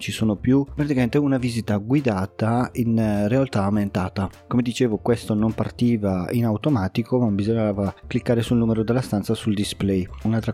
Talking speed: 155 wpm